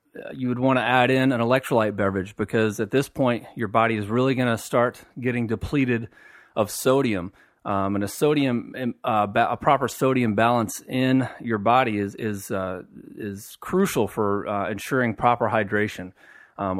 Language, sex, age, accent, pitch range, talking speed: English, male, 30-49, American, 105-120 Hz, 170 wpm